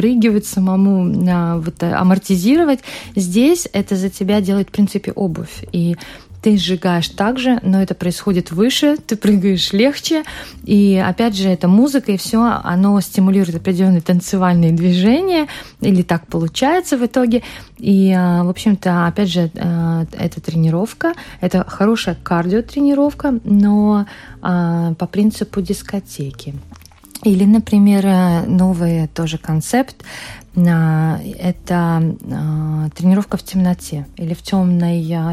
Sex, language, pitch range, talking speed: female, Russian, 170-205 Hz, 115 wpm